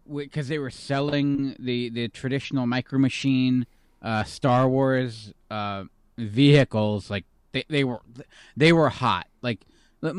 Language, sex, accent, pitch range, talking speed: English, male, American, 120-160 Hz, 135 wpm